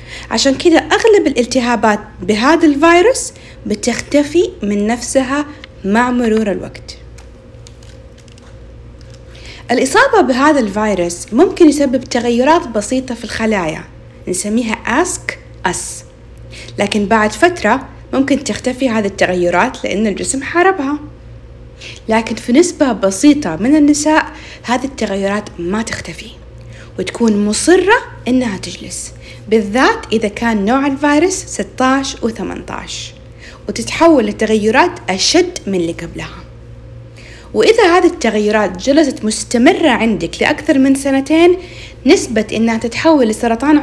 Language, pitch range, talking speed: Arabic, 210-305 Hz, 105 wpm